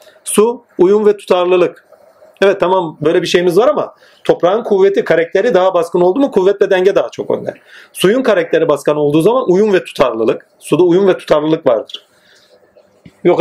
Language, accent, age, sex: Turkish, native, 40-59, male